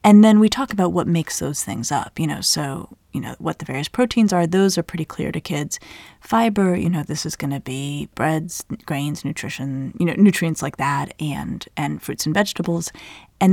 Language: English